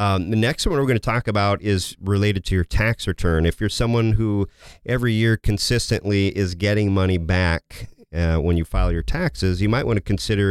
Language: English